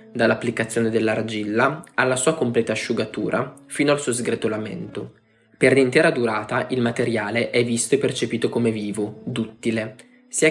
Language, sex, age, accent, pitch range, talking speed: Italian, male, 20-39, native, 115-130 Hz, 130 wpm